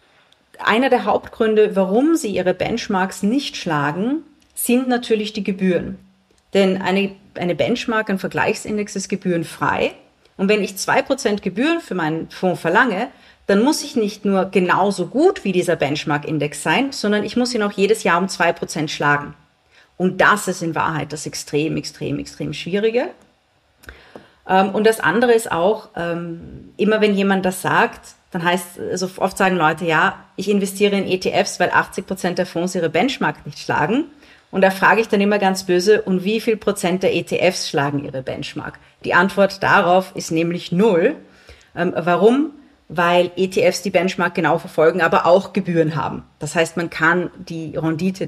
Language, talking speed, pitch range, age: German, 165 wpm, 165-210 Hz, 40-59